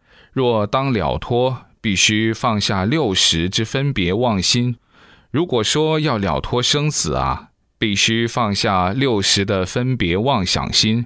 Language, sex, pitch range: Chinese, male, 95-125 Hz